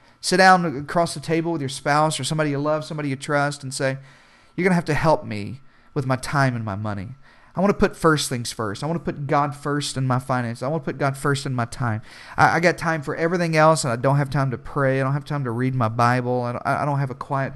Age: 40-59